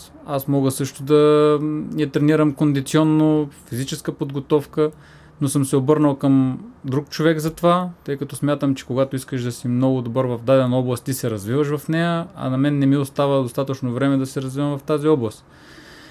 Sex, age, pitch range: male, 20-39, 130-160 Hz